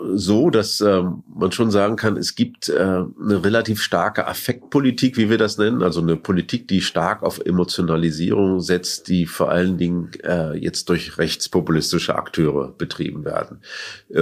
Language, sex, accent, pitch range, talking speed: German, male, German, 85-100 Hz, 160 wpm